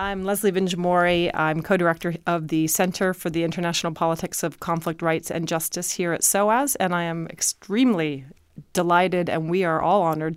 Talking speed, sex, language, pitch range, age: 175 wpm, female, English, 170-195 Hz, 30-49